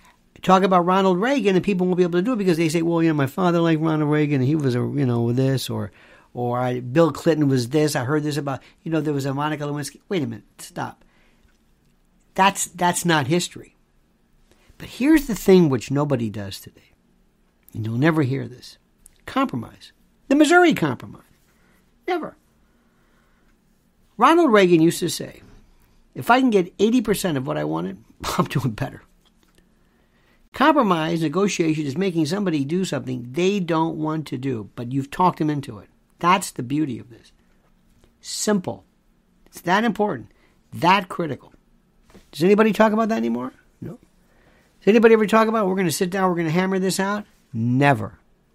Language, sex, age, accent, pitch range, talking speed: English, male, 60-79, American, 125-190 Hz, 180 wpm